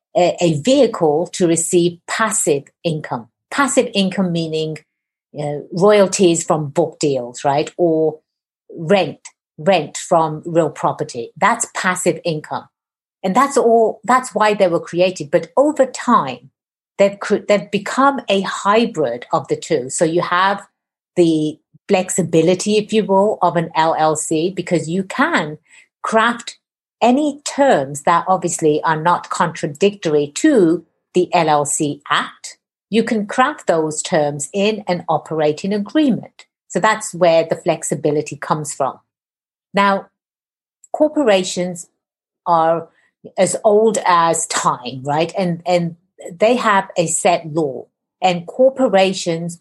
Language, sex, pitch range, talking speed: English, female, 160-200 Hz, 120 wpm